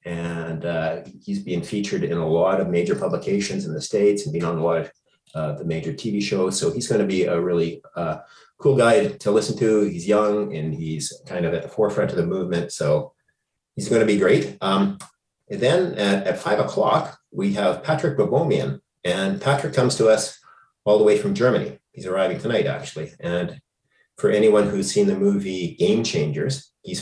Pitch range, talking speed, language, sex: 85-130 Hz, 200 wpm, English, male